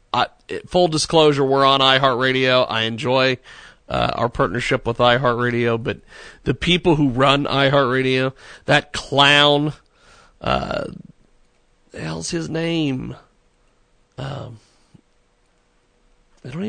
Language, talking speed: English, 105 wpm